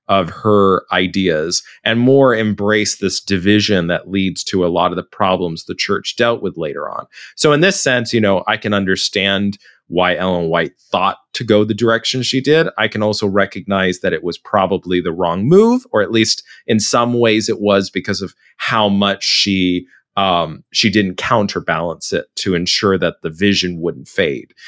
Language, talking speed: English, 185 wpm